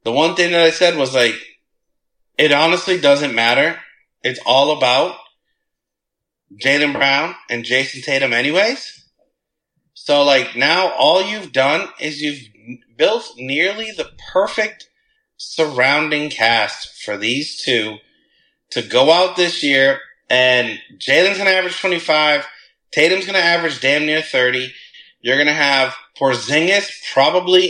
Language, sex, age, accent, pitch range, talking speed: English, male, 30-49, American, 140-190 Hz, 135 wpm